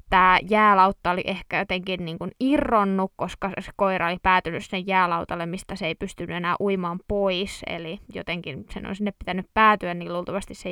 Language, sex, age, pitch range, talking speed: Finnish, female, 20-39, 185-225 Hz, 180 wpm